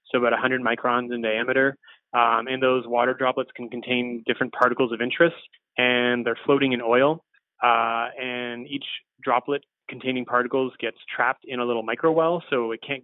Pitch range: 120-135 Hz